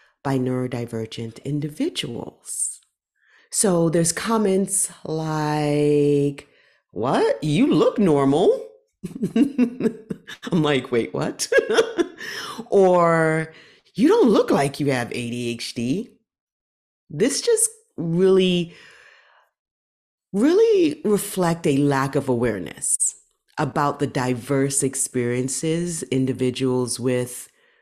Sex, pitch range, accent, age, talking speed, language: female, 125-180 Hz, American, 40-59, 80 wpm, English